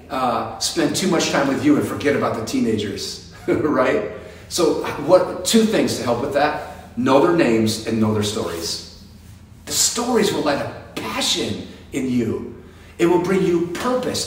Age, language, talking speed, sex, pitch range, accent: 40-59, English, 175 wpm, male, 100-135 Hz, American